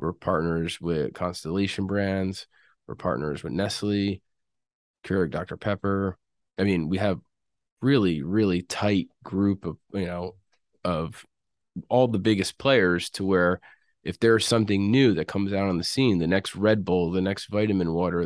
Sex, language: male, English